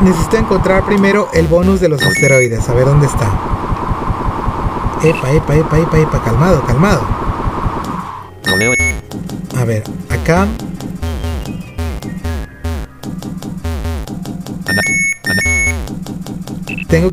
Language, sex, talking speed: Spanish, male, 80 wpm